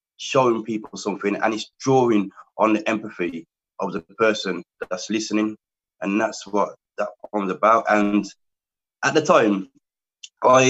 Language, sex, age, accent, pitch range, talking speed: English, male, 20-39, British, 100-125 Hz, 140 wpm